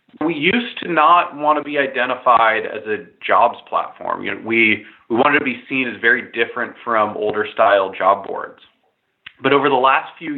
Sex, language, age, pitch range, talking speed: male, English, 20-39, 110-150 Hz, 190 wpm